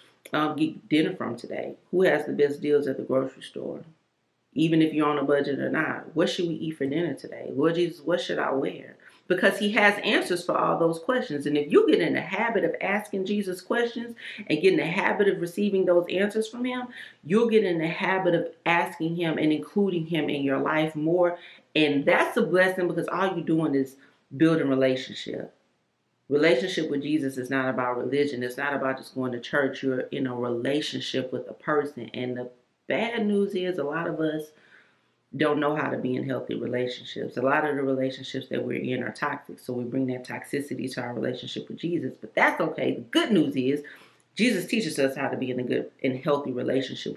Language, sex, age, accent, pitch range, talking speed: English, female, 40-59, American, 135-175 Hz, 215 wpm